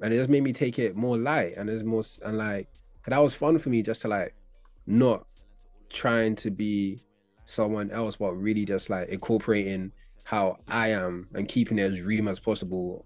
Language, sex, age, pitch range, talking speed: English, male, 20-39, 95-115 Hz, 200 wpm